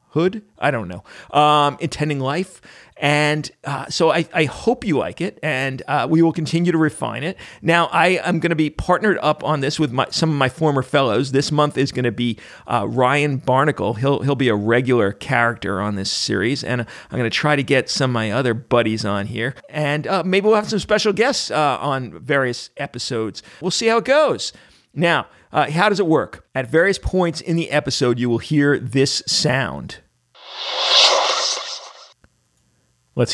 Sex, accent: male, American